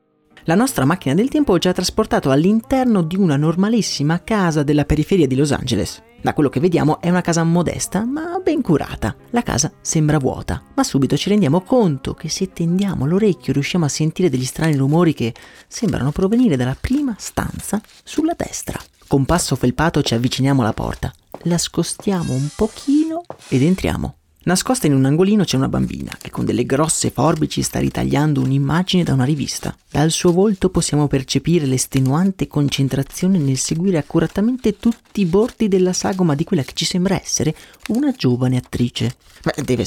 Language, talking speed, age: Italian, 170 wpm, 30-49